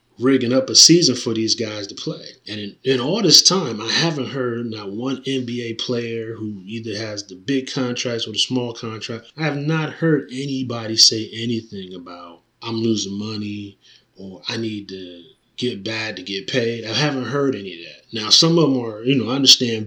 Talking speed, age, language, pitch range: 200 wpm, 20-39, English, 105-125 Hz